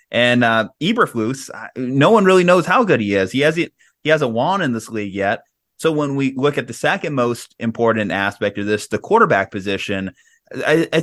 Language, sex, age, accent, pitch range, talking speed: English, male, 30-49, American, 105-140 Hz, 200 wpm